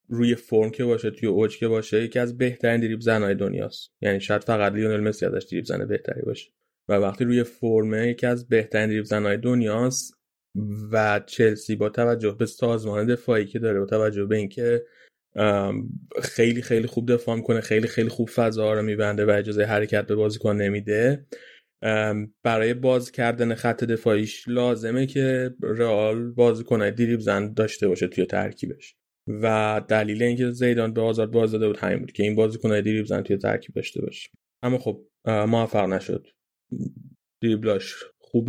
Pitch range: 105-120 Hz